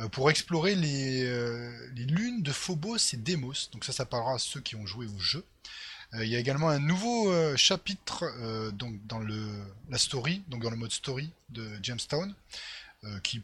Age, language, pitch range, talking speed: 20-39, French, 120-160 Hz, 200 wpm